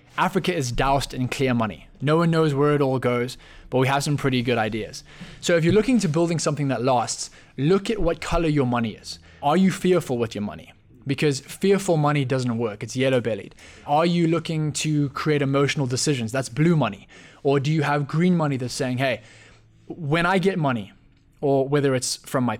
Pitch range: 120-155 Hz